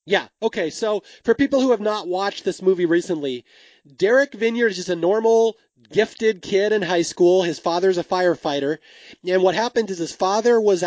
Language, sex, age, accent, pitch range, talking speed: English, male, 30-49, American, 165-200 Hz, 190 wpm